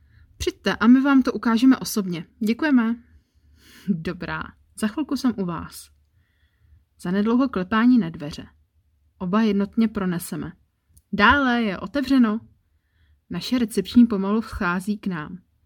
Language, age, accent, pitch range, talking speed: Czech, 30-49, native, 160-230 Hz, 120 wpm